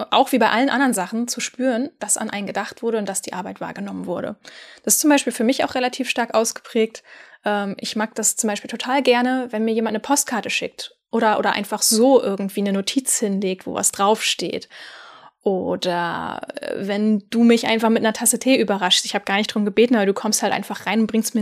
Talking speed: 220 wpm